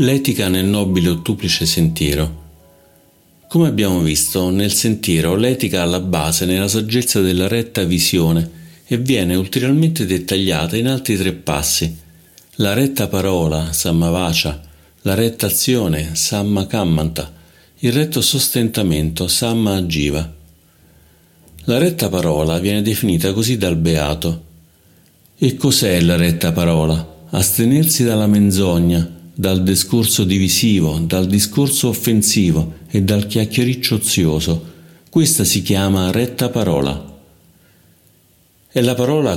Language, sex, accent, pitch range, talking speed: Italian, male, native, 80-110 Hz, 115 wpm